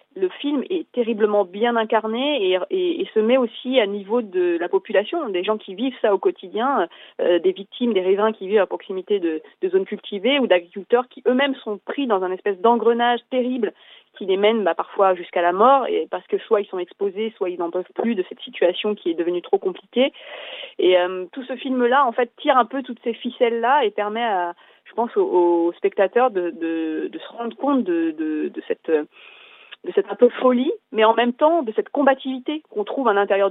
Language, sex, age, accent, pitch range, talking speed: French, female, 30-49, French, 205-290 Hz, 220 wpm